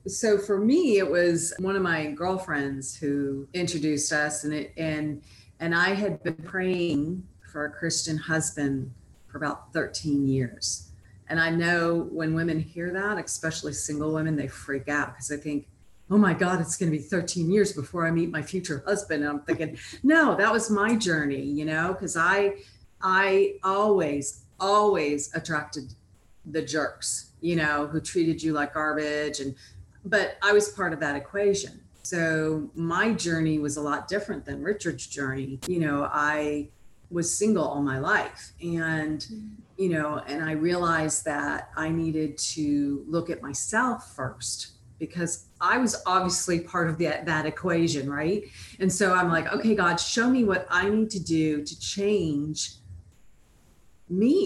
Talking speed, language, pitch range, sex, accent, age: 165 wpm, English, 145-185 Hz, female, American, 40-59